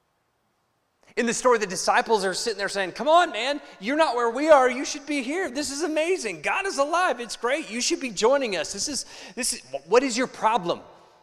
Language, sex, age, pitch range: Japanese, male, 30-49, 150-235 Hz